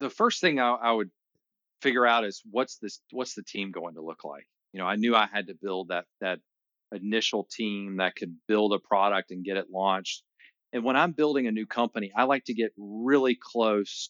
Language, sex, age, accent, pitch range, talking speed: English, male, 40-59, American, 95-120 Hz, 220 wpm